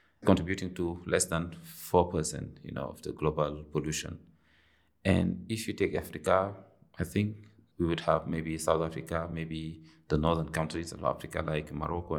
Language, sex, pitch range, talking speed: English, male, 80-100 Hz, 160 wpm